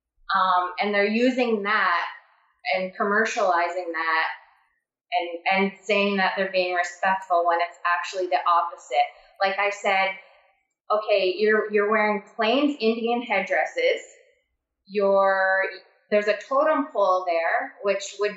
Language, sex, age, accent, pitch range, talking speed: English, female, 20-39, American, 185-220 Hz, 125 wpm